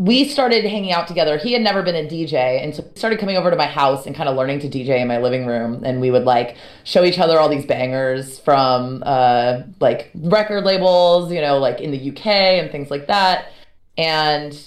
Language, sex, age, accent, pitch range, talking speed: English, female, 30-49, American, 135-175 Hz, 225 wpm